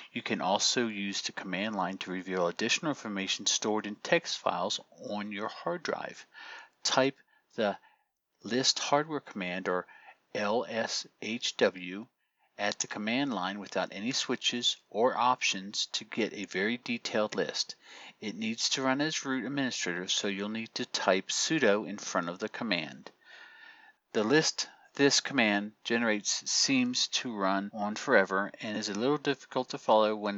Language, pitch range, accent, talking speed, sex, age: English, 100-135 Hz, American, 150 wpm, male, 40-59